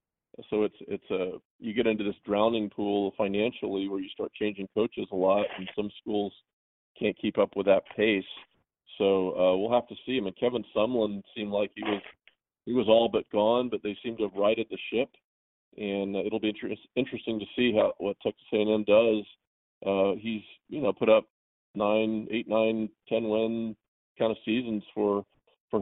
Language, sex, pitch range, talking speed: English, male, 100-115 Hz, 200 wpm